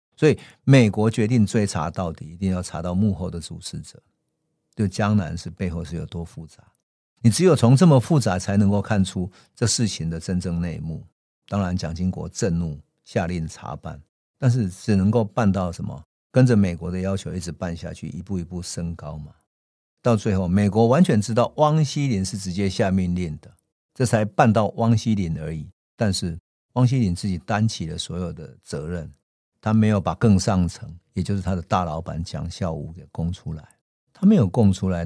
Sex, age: male, 50-69